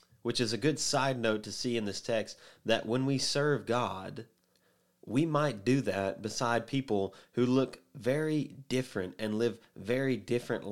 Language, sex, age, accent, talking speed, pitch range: English, male, 30-49, American, 170 wpm, 105-125 Hz